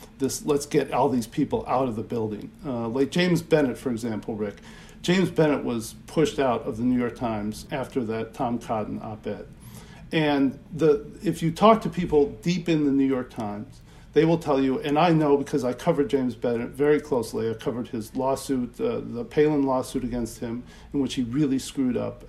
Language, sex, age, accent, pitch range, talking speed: English, male, 50-69, American, 130-180 Hz, 200 wpm